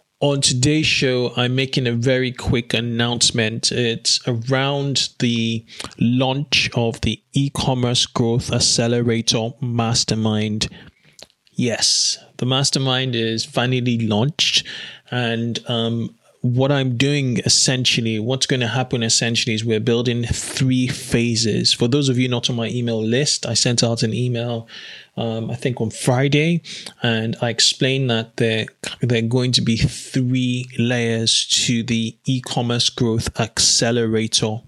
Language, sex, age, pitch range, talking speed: English, male, 20-39, 115-130 Hz, 130 wpm